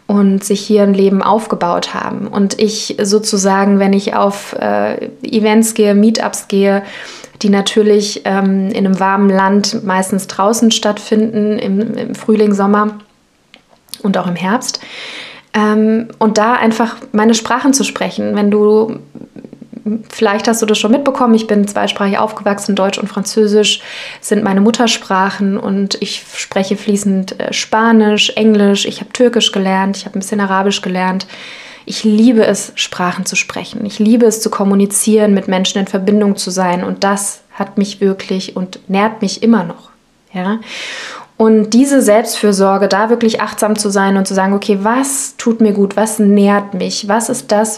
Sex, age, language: female, 20-39, German